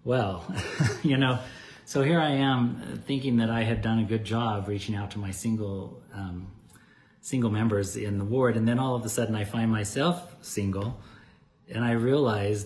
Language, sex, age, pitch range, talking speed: English, male, 40-59, 105-125 Hz, 190 wpm